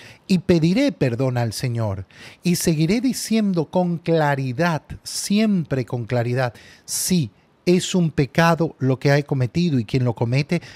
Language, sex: Spanish, male